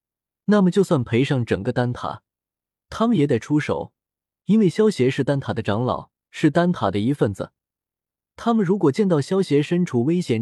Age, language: 20-39, Chinese